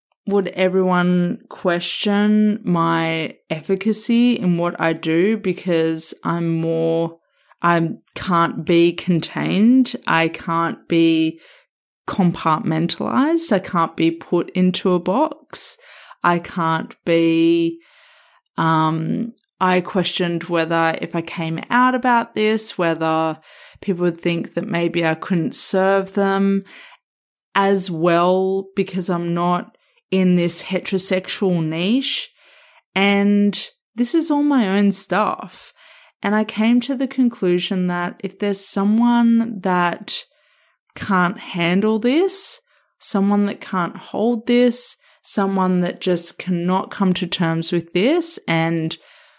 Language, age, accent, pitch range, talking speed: English, 20-39, Australian, 170-215 Hz, 115 wpm